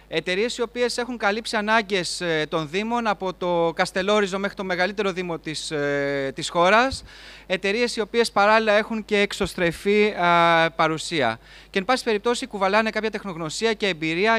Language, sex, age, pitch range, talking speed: Greek, male, 30-49, 175-215 Hz, 150 wpm